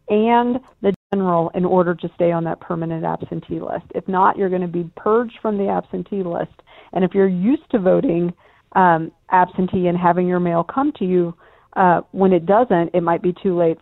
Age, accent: 40-59, American